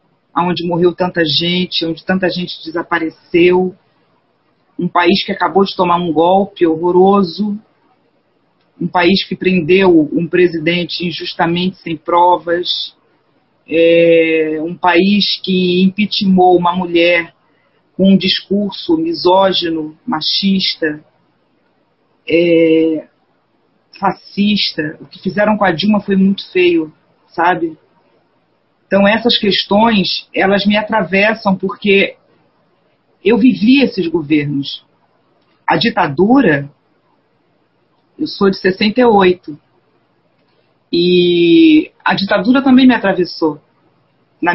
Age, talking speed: 40-59, 95 wpm